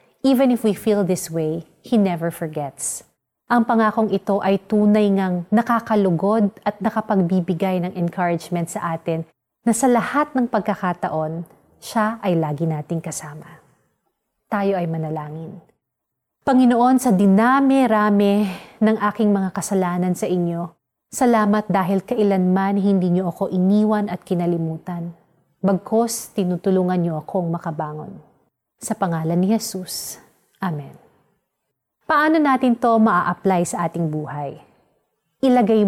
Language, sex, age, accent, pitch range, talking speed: Filipino, female, 30-49, native, 175-225 Hz, 120 wpm